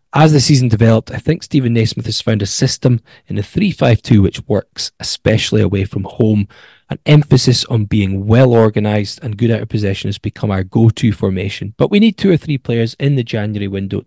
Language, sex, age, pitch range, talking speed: English, male, 10-29, 100-125 Hz, 205 wpm